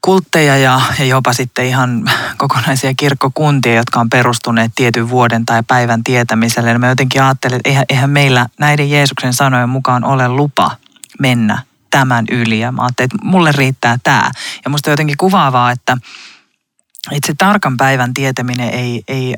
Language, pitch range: Finnish, 125-155 Hz